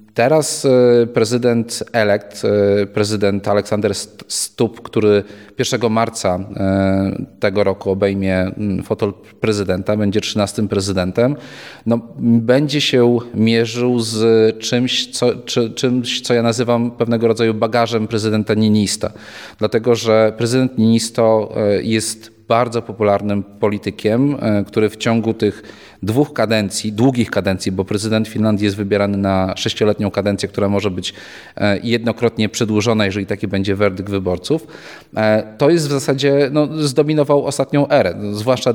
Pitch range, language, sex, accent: 105-125 Hz, Polish, male, native